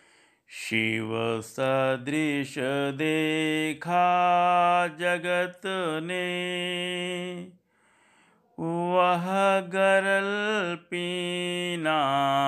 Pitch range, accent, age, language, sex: 115-175 Hz, native, 50-69, Hindi, male